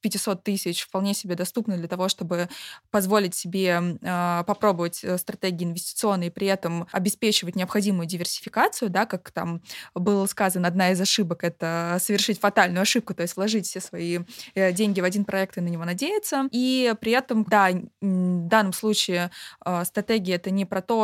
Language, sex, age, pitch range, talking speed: Russian, female, 20-39, 185-220 Hz, 155 wpm